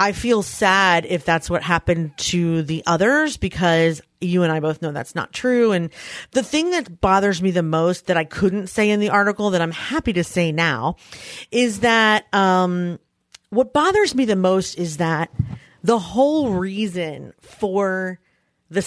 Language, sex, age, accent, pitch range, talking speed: English, female, 30-49, American, 170-215 Hz, 175 wpm